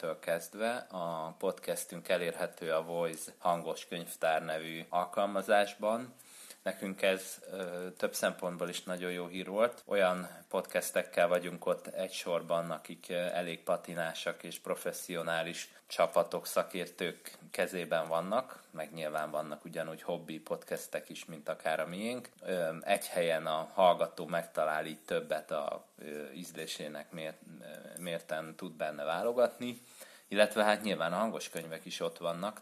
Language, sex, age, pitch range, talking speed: Hungarian, male, 30-49, 80-95 Hz, 120 wpm